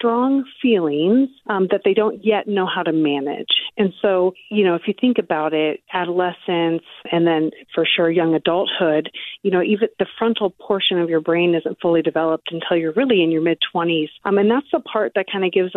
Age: 30-49